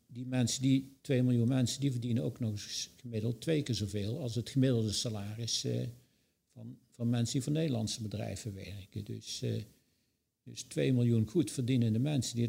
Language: Dutch